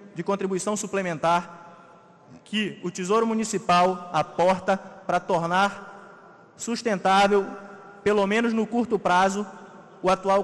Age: 20-39